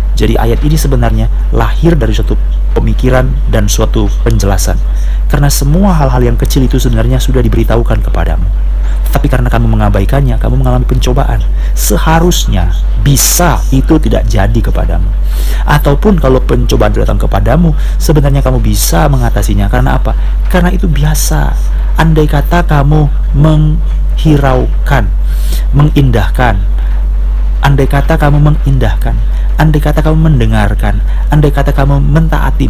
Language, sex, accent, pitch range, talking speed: Indonesian, male, native, 100-145 Hz, 120 wpm